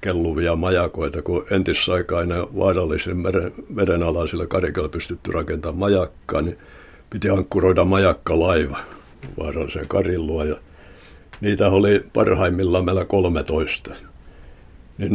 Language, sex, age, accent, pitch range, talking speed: Finnish, male, 60-79, native, 75-95 Hz, 105 wpm